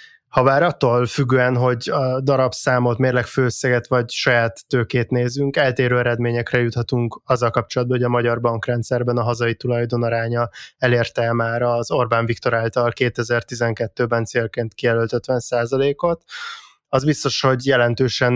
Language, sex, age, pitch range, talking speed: Hungarian, male, 20-39, 120-130 Hz, 130 wpm